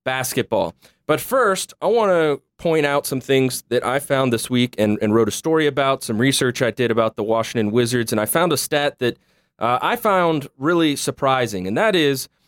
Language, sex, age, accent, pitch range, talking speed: English, male, 30-49, American, 115-150 Hz, 205 wpm